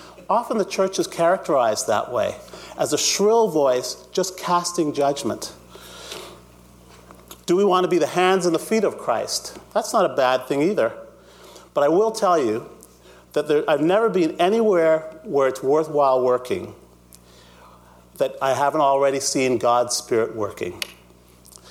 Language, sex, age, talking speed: English, male, 40-59, 150 wpm